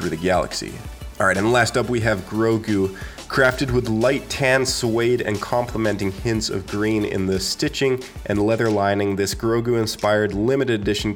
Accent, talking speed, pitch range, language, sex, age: American, 165 wpm, 95-115 Hz, English, male, 20-39